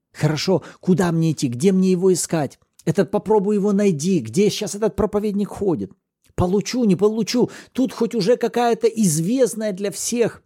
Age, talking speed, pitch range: 40-59, 155 wpm, 150-215 Hz